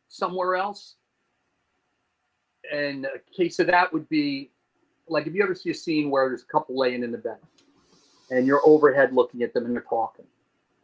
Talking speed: 185 wpm